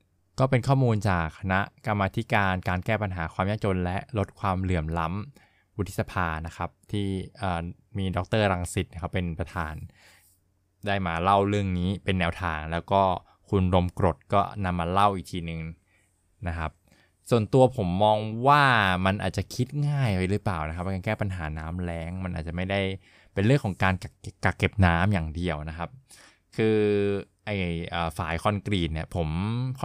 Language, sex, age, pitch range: Thai, male, 20-39, 90-115 Hz